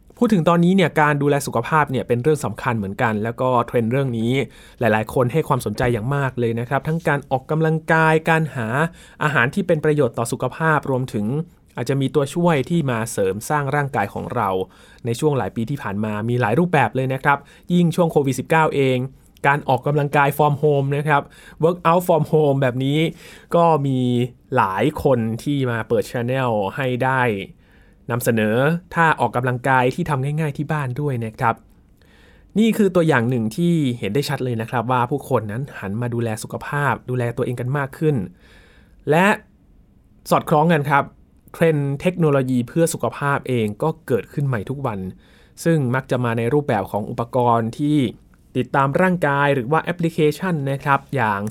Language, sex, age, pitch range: Thai, male, 20-39, 120-155 Hz